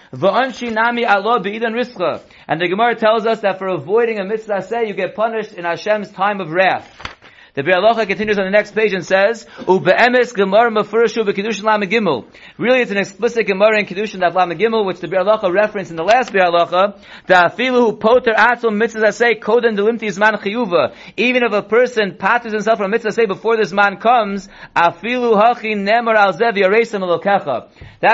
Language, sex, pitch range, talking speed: English, male, 185-225 Hz, 130 wpm